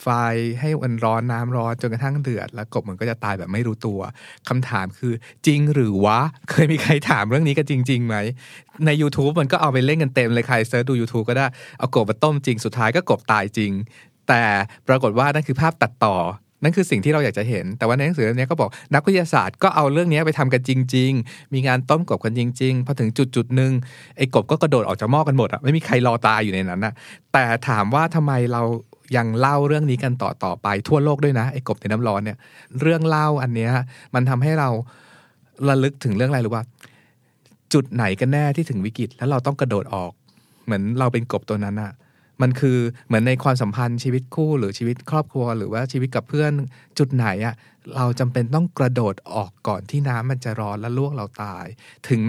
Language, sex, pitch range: Thai, male, 115-140 Hz